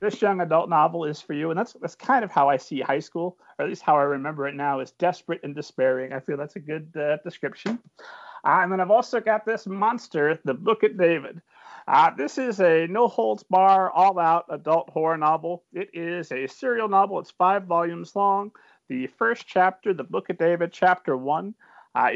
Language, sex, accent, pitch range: English, male, American, 155-215 Hz